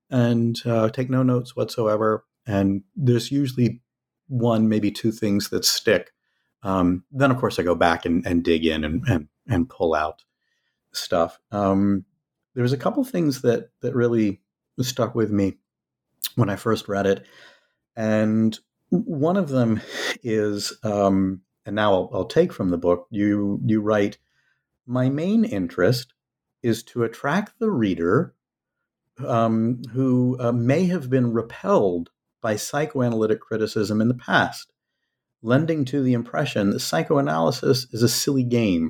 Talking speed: 150 wpm